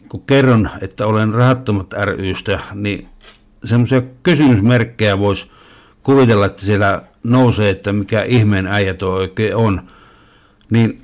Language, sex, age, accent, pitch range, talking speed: Finnish, male, 60-79, native, 100-120 Hz, 115 wpm